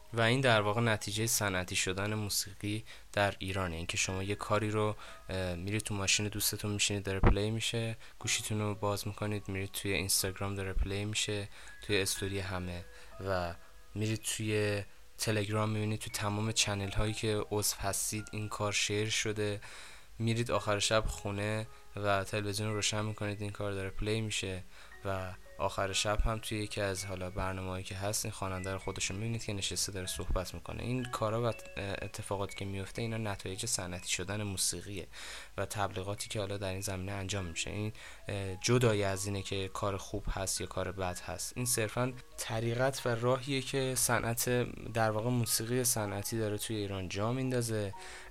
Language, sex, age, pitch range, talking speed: Persian, male, 20-39, 95-110 Hz, 165 wpm